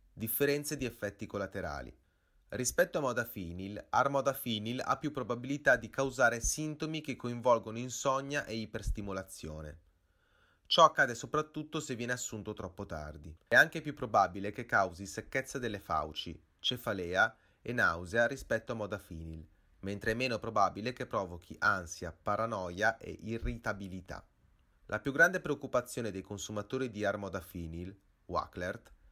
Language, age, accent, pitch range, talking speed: English, 30-49, Italian, 90-125 Hz, 125 wpm